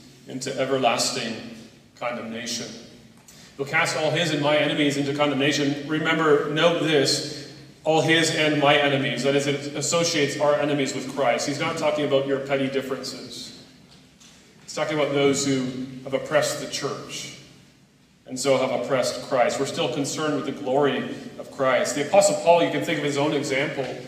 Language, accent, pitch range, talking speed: English, American, 135-160 Hz, 165 wpm